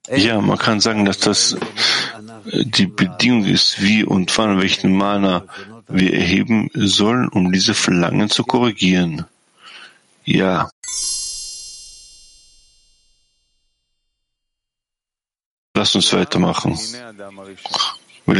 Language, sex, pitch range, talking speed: German, male, 95-115 Hz, 90 wpm